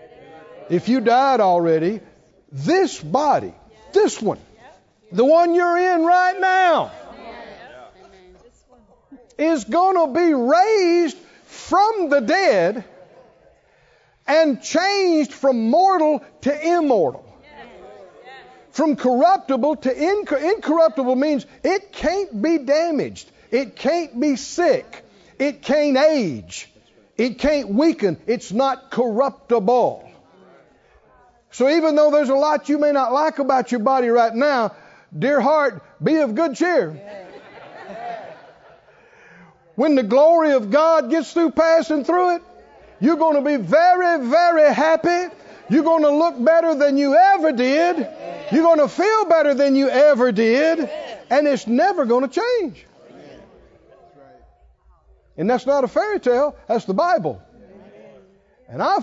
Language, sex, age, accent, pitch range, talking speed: English, male, 50-69, American, 255-335 Hz, 125 wpm